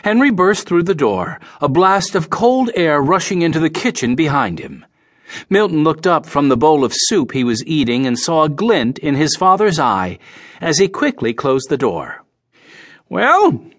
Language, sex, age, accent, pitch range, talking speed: English, male, 50-69, American, 150-215 Hz, 185 wpm